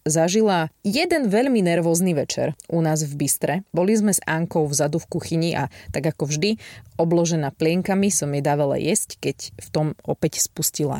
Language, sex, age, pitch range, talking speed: Slovak, female, 20-39, 155-215 Hz, 170 wpm